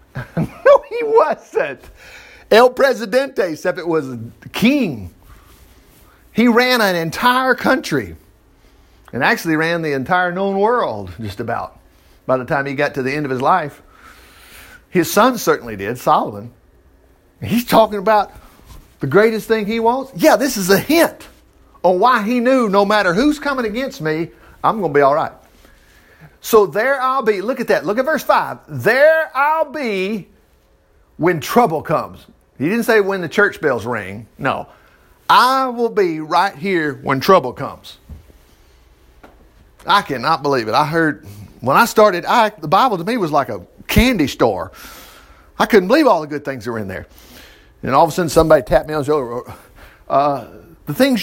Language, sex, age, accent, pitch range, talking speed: English, male, 50-69, American, 140-235 Hz, 170 wpm